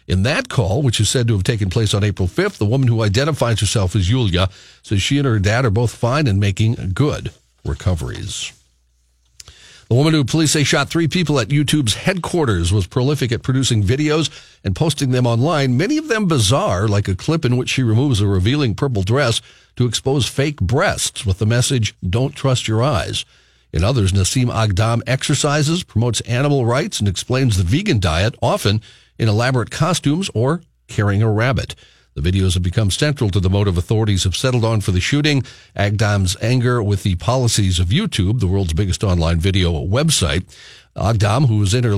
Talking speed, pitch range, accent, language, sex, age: 190 wpm, 100-135 Hz, American, English, male, 50-69